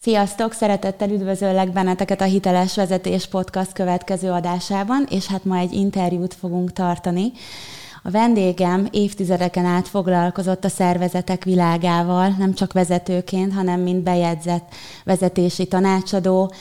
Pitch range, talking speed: 175-190 Hz, 120 wpm